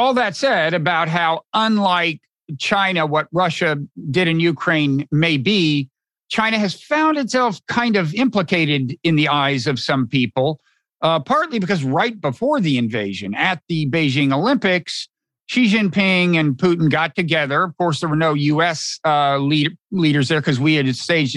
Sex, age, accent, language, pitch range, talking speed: male, 50-69, American, English, 145-190 Hz, 160 wpm